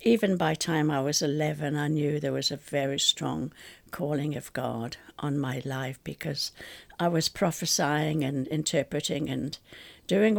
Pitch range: 145-175 Hz